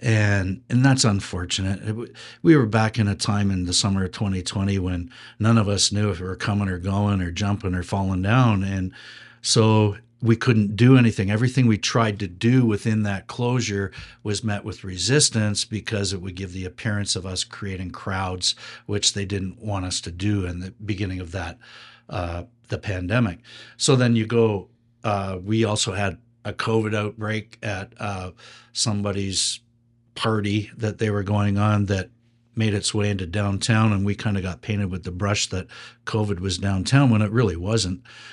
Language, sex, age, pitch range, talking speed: English, male, 60-79, 100-115 Hz, 185 wpm